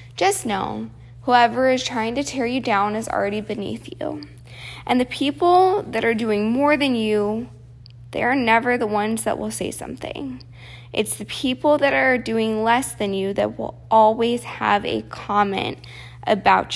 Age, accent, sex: 20-39, American, female